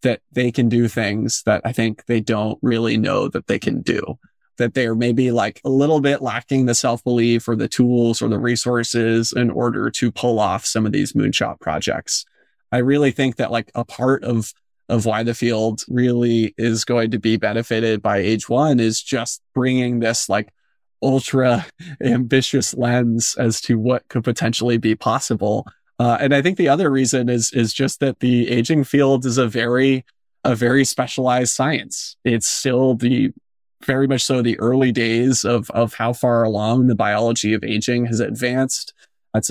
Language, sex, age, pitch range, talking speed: English, male, 20-39, 115-130 Hz, 185 wpm